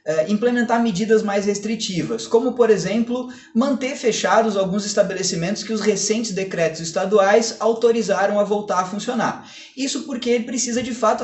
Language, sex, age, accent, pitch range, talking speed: Portuguese, male, 20-39, Brazilian, 185-235 Hz, 145 wpm